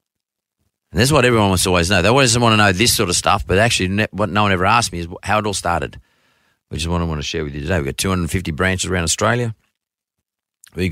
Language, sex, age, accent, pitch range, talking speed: English, male, 30-49, Australian, 90-110 Hz, 255 wpm